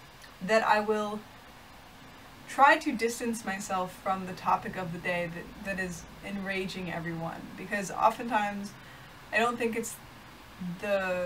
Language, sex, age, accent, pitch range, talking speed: English, female, 20-39, American, 185-225 Hz, 135 wpm